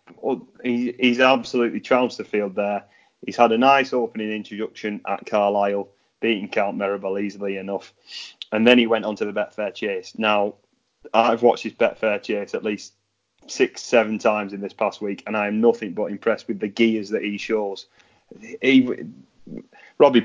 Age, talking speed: 30-49, 165 wpm